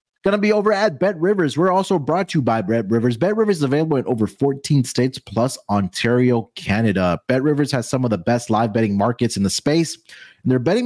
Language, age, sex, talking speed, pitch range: English, 30-49, male, 230 wpm, 100-145 Hz